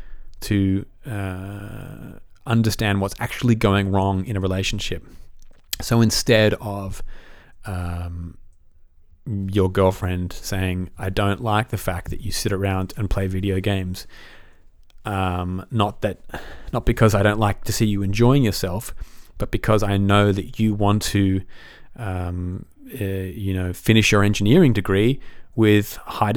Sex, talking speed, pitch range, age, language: male, 140 wpm, 95-110 Hz, 30-49, English